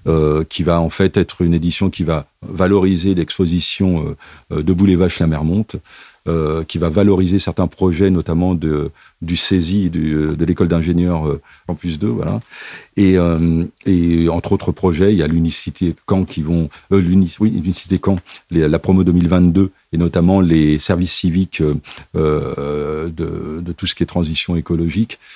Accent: French